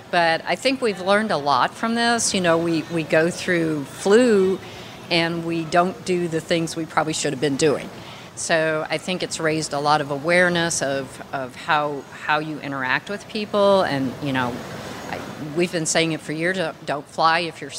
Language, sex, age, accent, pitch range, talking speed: English, female, 40-59, American, 145-180 Hz, 200 wpm